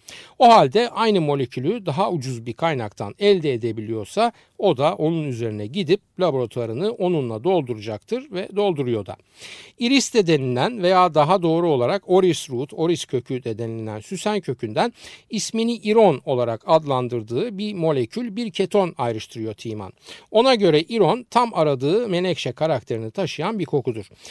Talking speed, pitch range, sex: 140 wpm, 130-210 Hz, male